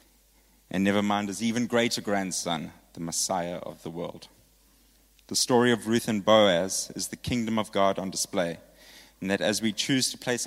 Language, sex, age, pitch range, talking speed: English, male, 30-49, 90-105 Hz, 185 wpm